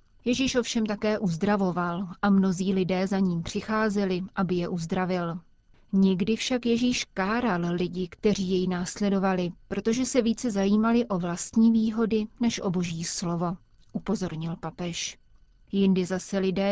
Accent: native